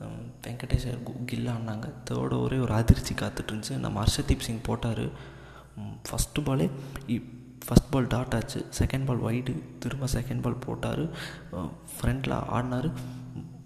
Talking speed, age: 115 wpm, 20-39